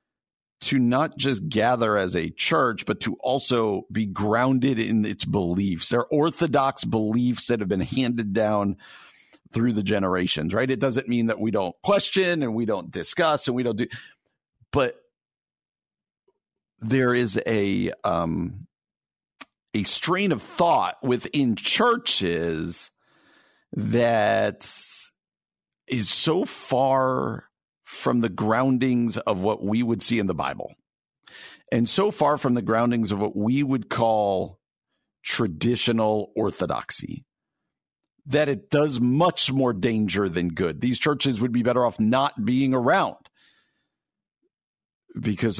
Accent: American